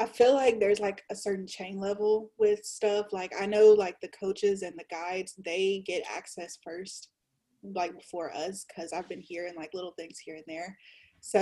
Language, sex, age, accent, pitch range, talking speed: English, female, 20-39, American, 180-215 Hz, 200 wpm